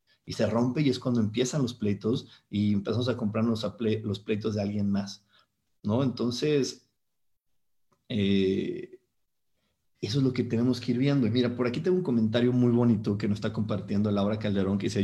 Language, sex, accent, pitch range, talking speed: Spanish, male, Mexican, 105-125 Hz, 190 wpm